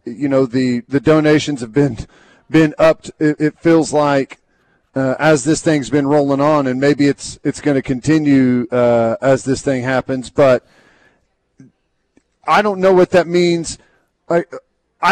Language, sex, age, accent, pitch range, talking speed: English, male, 40-59, American, 145-170 Hz, 155 wpm